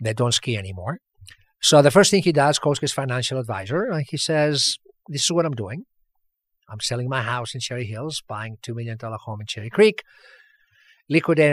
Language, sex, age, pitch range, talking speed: English, male, 50-69, 110-160 Hz, 195 wpm